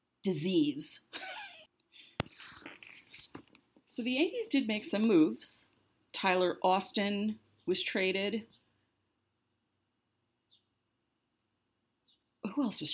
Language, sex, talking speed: English, female, 70 wpm